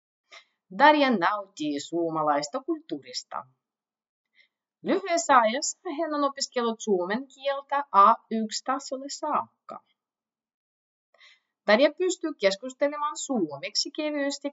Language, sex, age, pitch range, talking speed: Finnish, female, 30-49, 200-285 Hz, 75 wpm